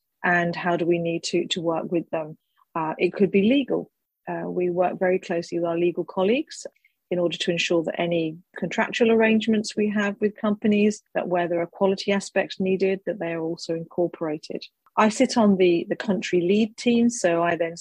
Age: 40-59